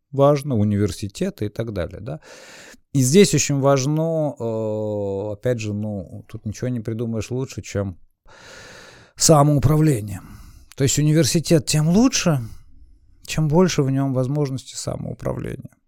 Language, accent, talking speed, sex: Russian, native, 115 wpm, male